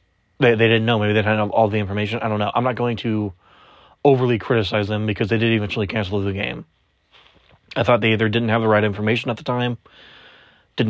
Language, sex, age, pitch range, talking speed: English, male, 20-39, 105-115 Hz, 220 wpm